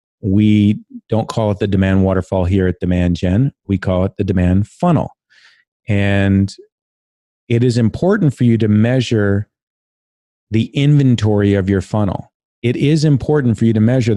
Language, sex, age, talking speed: English, male, 30-49, 155 wpm